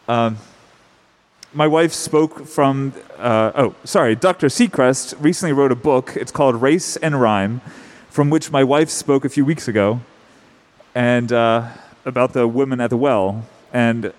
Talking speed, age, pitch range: 155 wpm, 30-49, 125-160 Hz